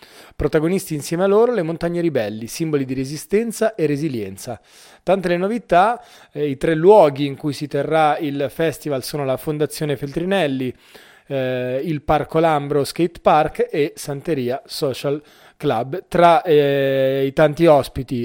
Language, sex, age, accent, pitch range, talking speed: Italian, male, 30-49, native, 140-175 Hz, 145 wpm